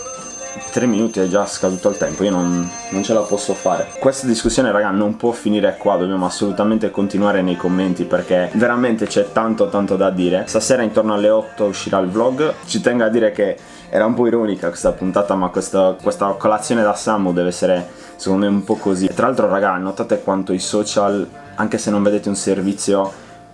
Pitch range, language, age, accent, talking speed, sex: 90-105 Hz, Italian, 20-39, native, 200 wpm, male